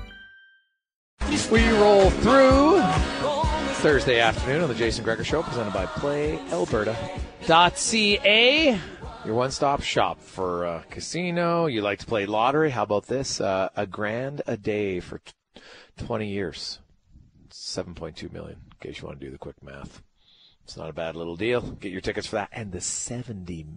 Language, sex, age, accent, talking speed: English, male, 40-59, American, 155 wpm